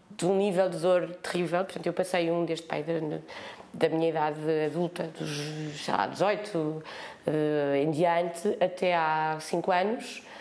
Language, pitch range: Portuguese, 185-235 Hz